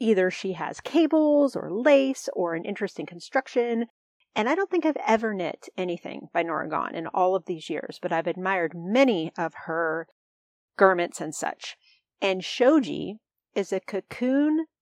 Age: 40-59